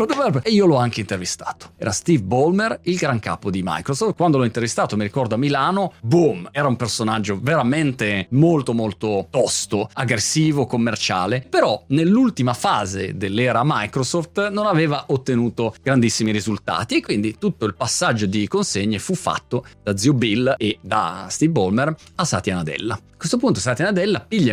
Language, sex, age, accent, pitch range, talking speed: Italian, male, 30-49, native, 110-170 Hz, 160 wpm